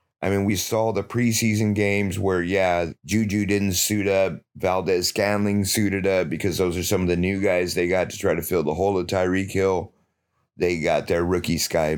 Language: English